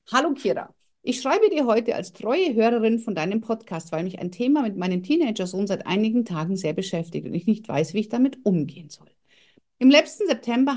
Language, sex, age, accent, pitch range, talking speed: German, female, 50-69, German, 185-250 Hz, 200 wpm